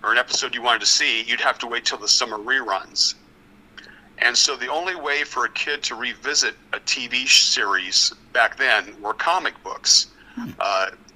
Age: 50-69